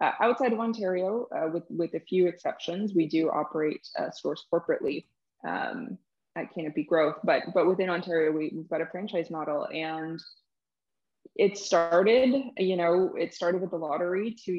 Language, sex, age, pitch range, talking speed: English, female, 20-39, 160-185 Hz, 170 wpm